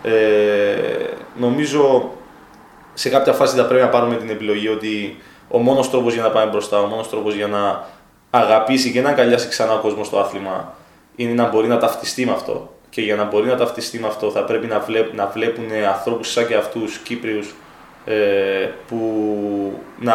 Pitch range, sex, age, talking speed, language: 110-145 Hz, male, 20-39, 190 wpm, Greek